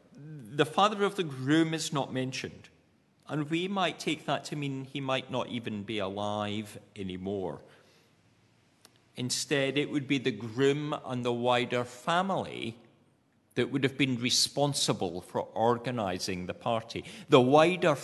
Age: 50-69